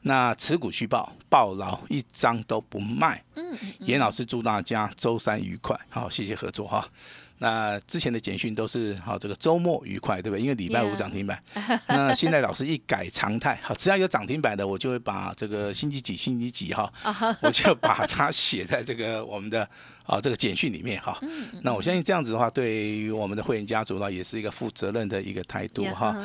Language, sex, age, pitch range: Chinese, male, 50-69, 105-135 Hz